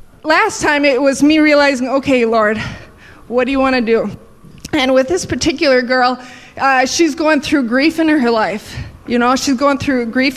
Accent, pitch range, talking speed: American, 240-295 Hz, 190 wpm